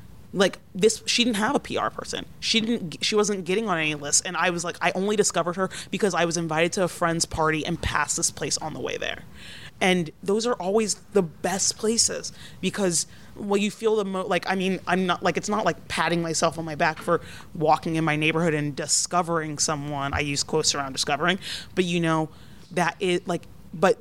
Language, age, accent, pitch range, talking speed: English, 30-49, American, 155-185 Hz, 215 wpm